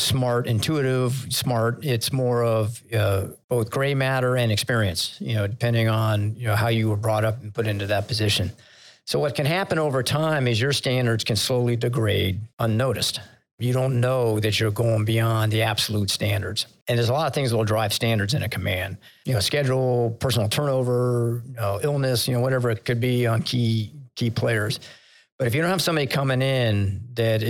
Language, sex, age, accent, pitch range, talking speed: English, male, 50-69, American, 110-130 Hz, 195 wpm